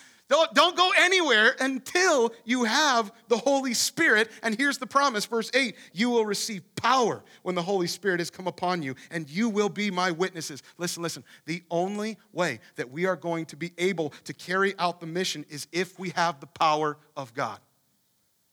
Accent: American